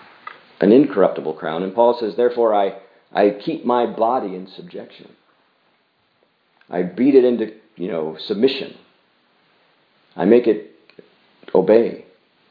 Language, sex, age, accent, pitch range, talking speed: English, male, 40-59, American, 95-125 Hz, 120 wpm